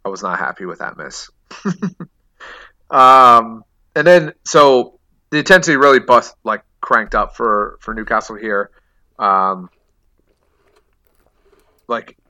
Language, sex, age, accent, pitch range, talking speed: English, male, 30-49, American, 100-125 Hz, 115 wpm